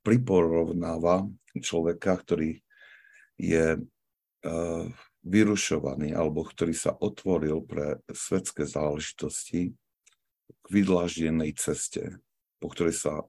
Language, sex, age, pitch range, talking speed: Slovak, male, 60-79, 75-95 Hz, 85 wpm